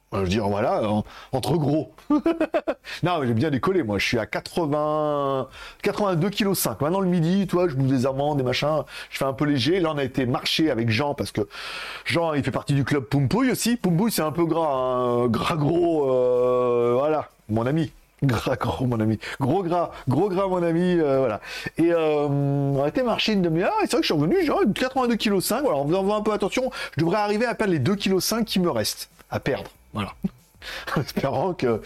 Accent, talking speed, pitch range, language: French, 220 wpm, 140-210 Hz, French